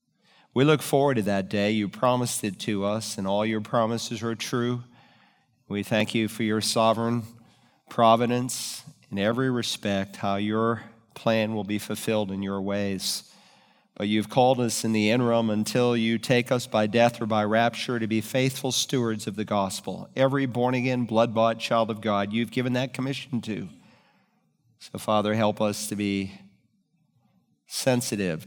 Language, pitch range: English, 105-125 Hz